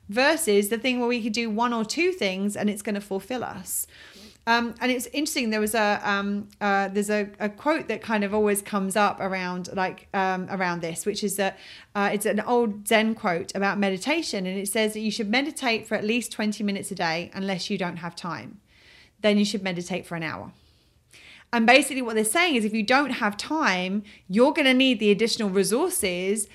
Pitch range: 200-250 Hz